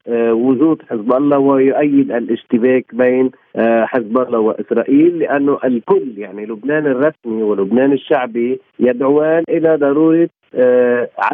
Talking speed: 100 wpm